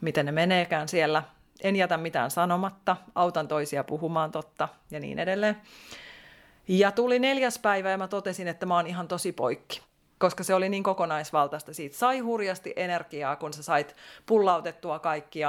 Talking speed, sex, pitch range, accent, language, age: 165 wpm, female, 155-210 Hz, native, Finnish, 30-49